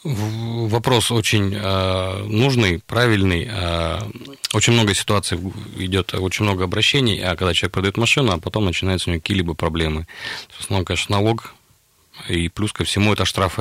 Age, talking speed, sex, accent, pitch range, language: 30-49, 160 wpm, male, native, 90-110 Hz, Russian